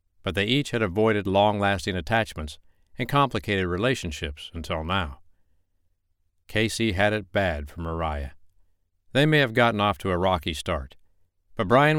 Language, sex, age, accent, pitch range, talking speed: English, male, 60-79, American, 85-110 Hz, 145 wpm